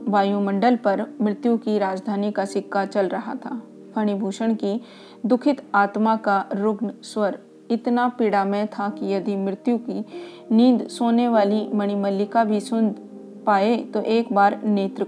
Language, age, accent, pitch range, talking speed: Hindi, 40-59, native, 200-235 Hz, 135 wpm